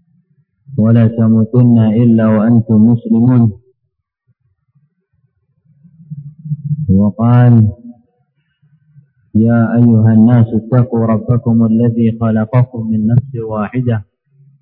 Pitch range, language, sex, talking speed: 110-140 Hz, Indonesian, male, 65 wpm